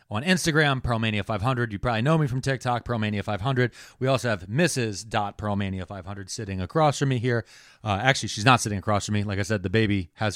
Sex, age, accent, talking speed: male, 30-49, American, 195 wpm